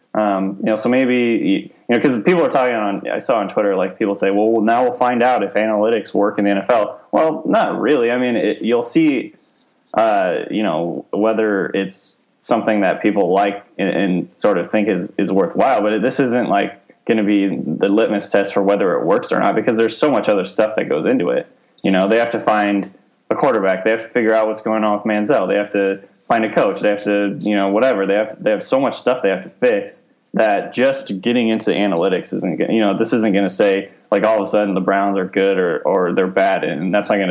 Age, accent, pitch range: 20-39, American, 100-115 Hz